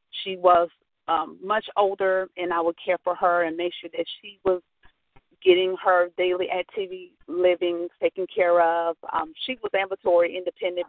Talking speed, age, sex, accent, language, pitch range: 165 wpm, 40-59, female, American, English, 175-215 Hz